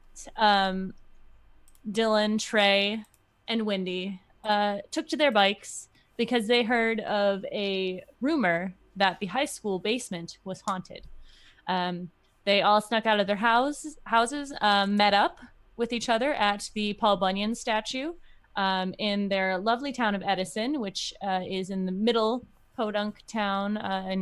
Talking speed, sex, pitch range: 150 wpm, female, 200-240 Hz